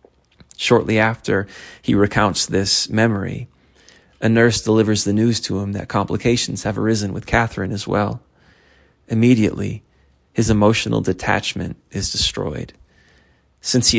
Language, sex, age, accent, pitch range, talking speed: English, male, 20-39, American, 100-115 Hz, 125 wpm